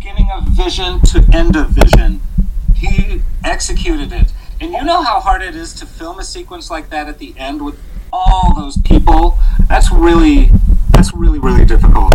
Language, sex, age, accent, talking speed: English, male, 40-59, American, 180 wpm